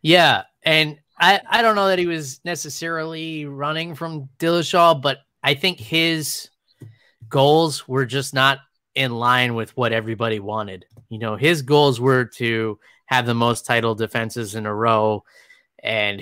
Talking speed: 155 wpm